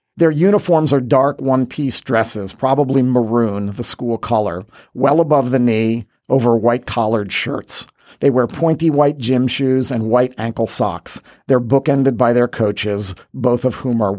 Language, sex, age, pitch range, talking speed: English, male, 50-69, 115-150 Hz, 155 wpm